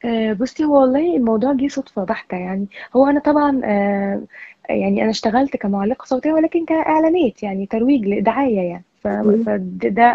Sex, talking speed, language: female, 135 wpm, Arabic